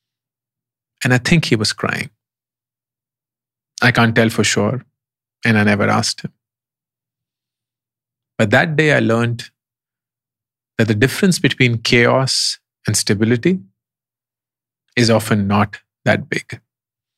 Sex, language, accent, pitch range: male, English, Indian, 115-130 Hz